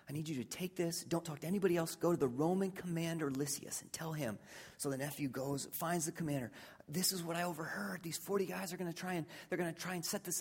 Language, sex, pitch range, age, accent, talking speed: English, male, 170-235 Hz, 30-49, American, 270 wpm